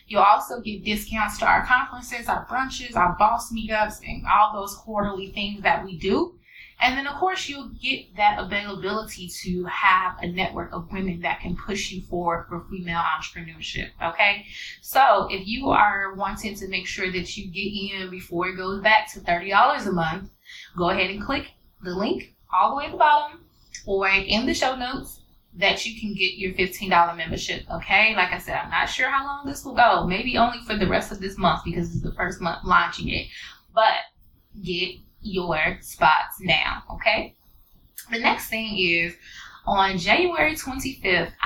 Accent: American